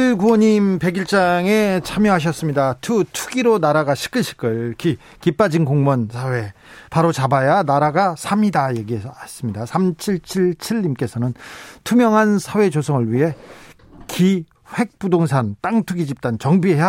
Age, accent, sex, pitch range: 40-59, native, male, 125-185 Hz